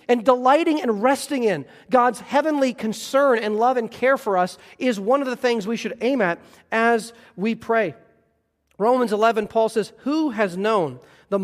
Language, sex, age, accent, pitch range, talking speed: English, male, 40-59, American, 160-225 Hz, 180 wpm